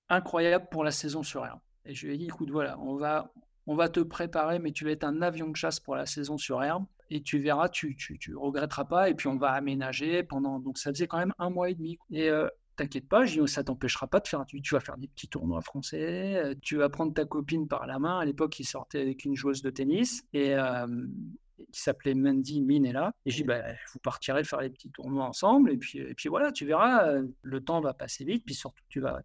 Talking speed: 265 wpm